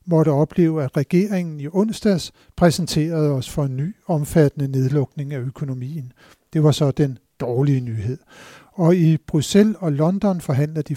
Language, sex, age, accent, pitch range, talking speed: Danish, male, 60-79, native, 145-175 Hz, 155 wpm